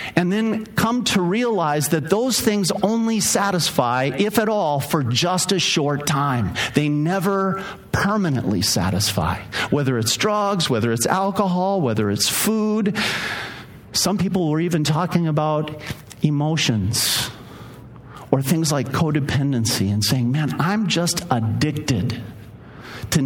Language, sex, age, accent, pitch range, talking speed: English, male, 50-69, American, 120-175 Hz, 125 wpm